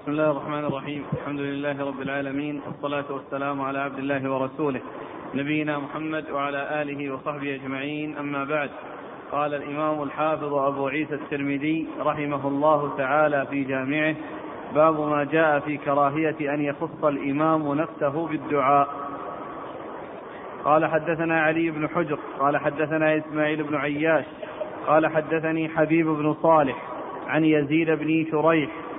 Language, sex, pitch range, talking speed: Arabic, male, 145-160 Hz, 130 wpm